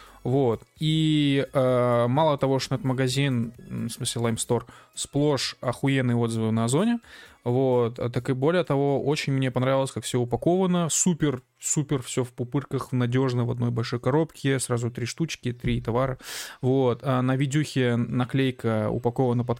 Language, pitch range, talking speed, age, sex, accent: Russian, 120-145 Hz, 150 wpm, 20-39, male, native